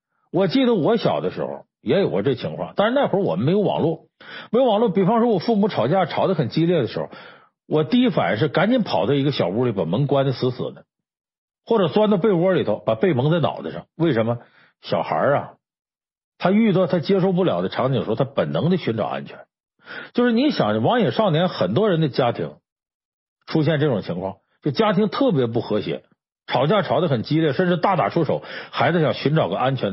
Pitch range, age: 140-205 Hz, 50-69